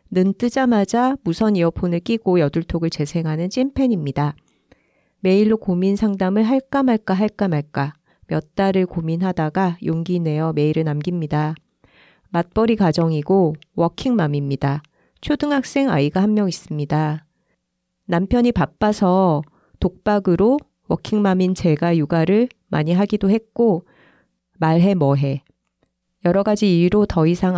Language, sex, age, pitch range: Korean, female, 40-59, 160-210 Hz